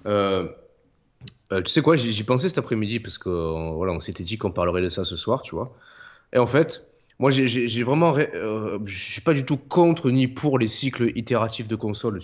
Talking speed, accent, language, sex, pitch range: 225 wpm, French, French, male, 105-135 Hz